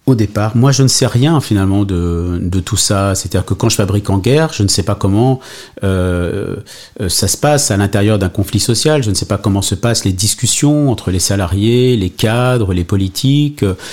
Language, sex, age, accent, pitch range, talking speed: French, male, 40-59, French, 100-135 Hz, 210 wpm